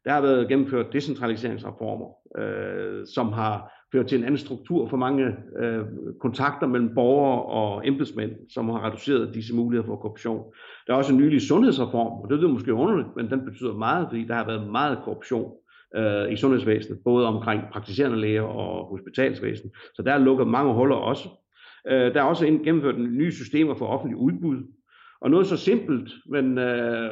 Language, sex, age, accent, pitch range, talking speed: Danish, male, 60-79, native, 115-135 Hz, 170 wpm